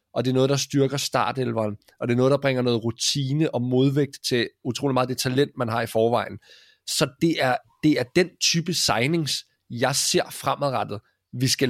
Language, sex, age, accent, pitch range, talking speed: Danish, male, 20-39, native, 125-155 Hz, 200 wpm